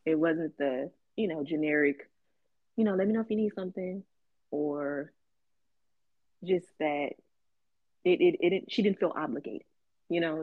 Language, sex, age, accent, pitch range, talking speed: English, female, 20-39, American, 150-205 Hz, 160 wpm